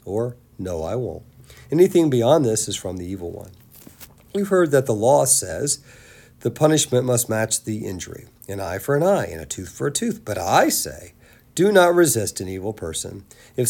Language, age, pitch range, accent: English, 50-69, 110-150 Hz, American